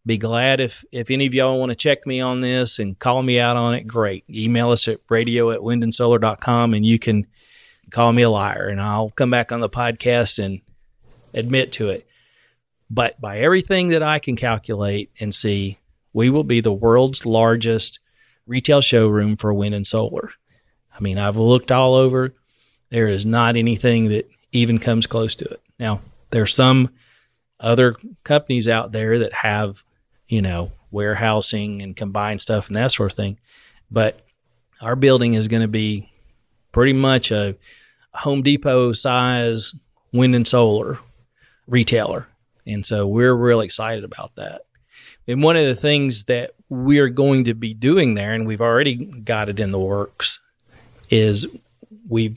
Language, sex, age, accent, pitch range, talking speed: English, male, 40-59, American, 105-125 Hz, 170 wpm